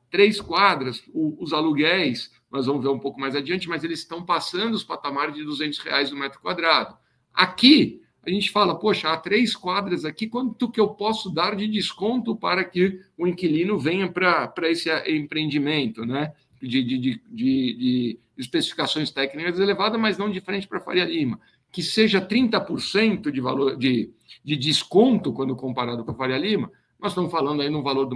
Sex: male